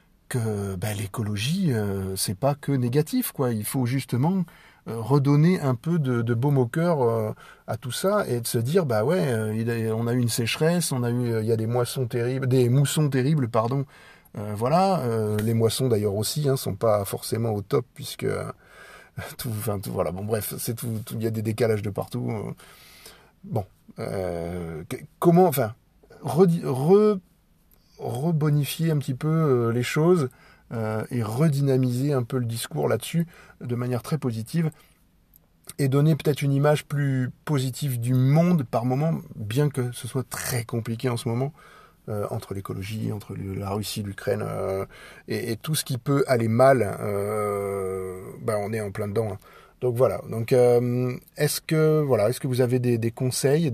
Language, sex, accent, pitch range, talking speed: French, male, French, 110-145 Hz, 180 wpm